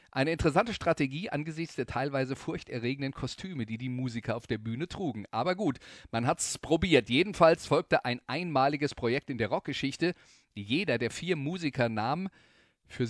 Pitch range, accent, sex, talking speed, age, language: 120-155 Hz, German, male, 160 wpm, 40-59, German